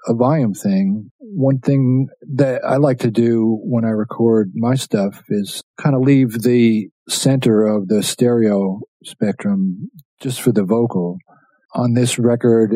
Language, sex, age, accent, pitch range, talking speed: English, male, 40-59, American, 105-170 Hz, 150 wpm